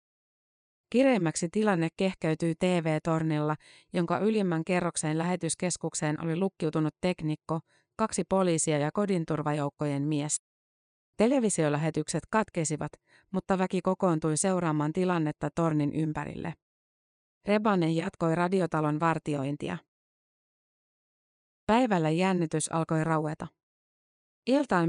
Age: 30-49